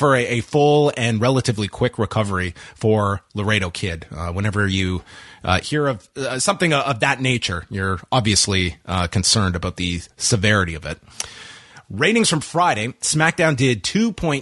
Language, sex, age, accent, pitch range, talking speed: English, male, 30-49, American, 105-145 Hz, 160 wpm